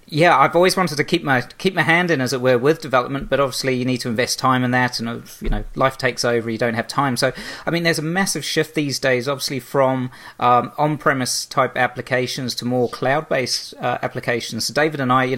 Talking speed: 240 wpm